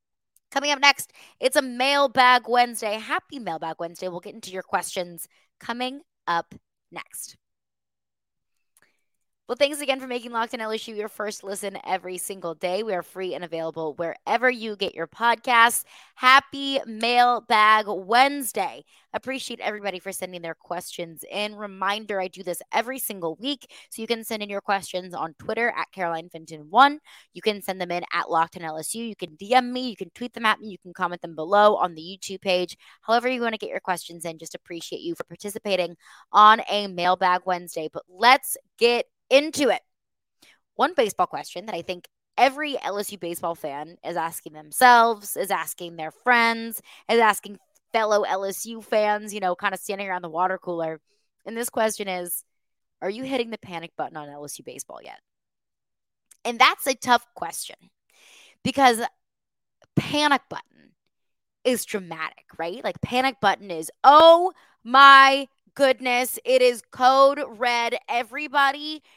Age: 20-39